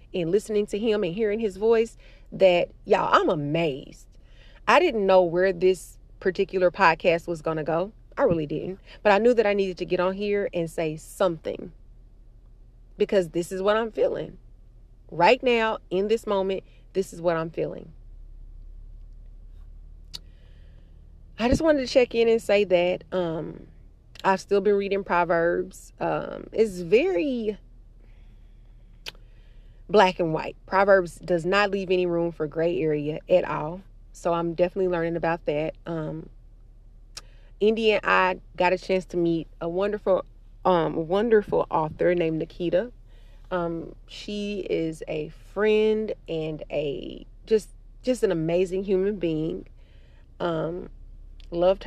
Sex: female